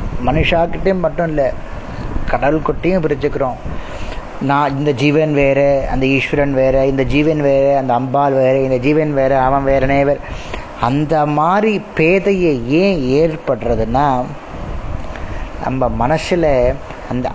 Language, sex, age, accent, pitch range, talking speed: Tamil, male, 20-39, native, 130-160 Hz, 115 wpm